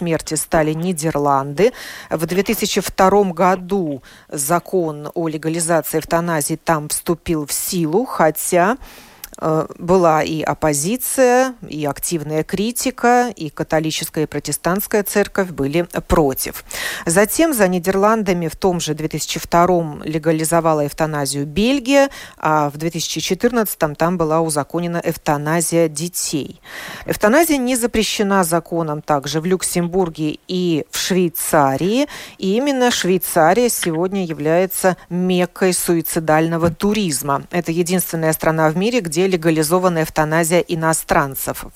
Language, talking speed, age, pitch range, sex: Russian, 105 wpm, 40-59, 160-195 Hz, female